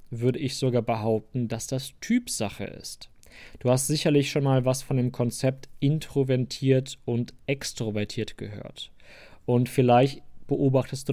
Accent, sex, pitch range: German, male, 115-135 Hz